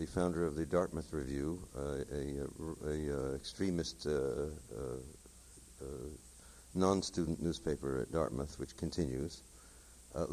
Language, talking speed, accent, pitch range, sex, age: English, 115 wpm, American, 65-85 Hz, male, 60-79